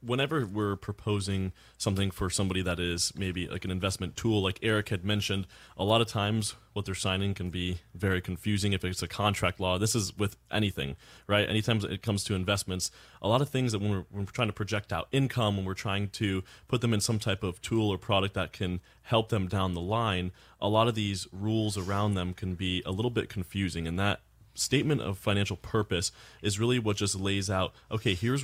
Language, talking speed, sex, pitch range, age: English, 215 wpm, male, 95-110 Hz, 20-39